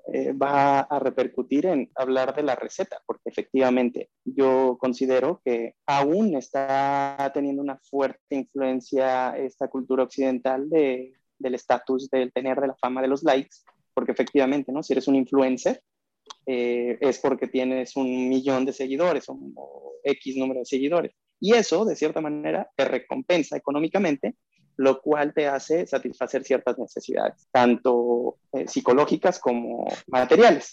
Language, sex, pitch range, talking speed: Spanish, male, 125-145 Hz, 145 wpm